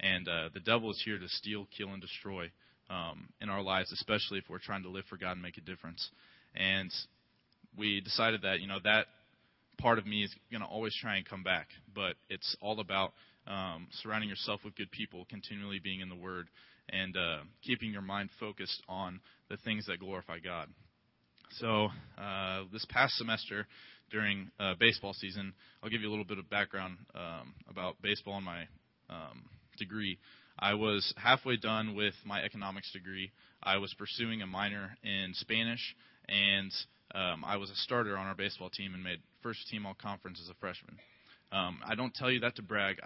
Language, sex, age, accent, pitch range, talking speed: English, male, 20-39, American, 95-105 Hz, 190 wpm